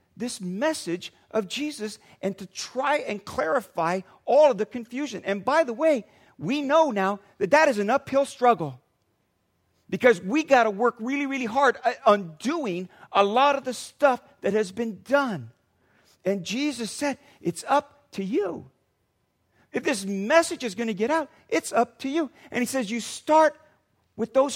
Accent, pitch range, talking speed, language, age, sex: American, 210-280 Hz, 175 wpm, English, 50-69, male